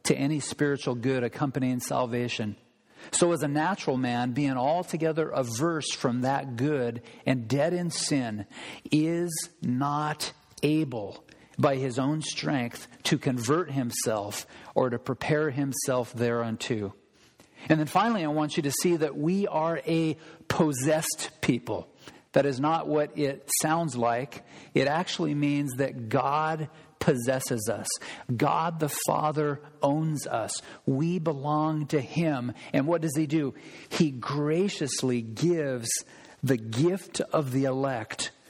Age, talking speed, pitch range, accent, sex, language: 50-69, 135 wpm, 130-155 Hz, American, male, English